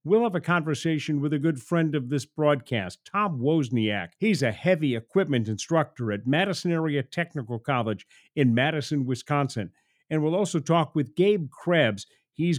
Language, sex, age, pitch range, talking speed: English, male, 50-69, 125-160 Hz, 160 wpm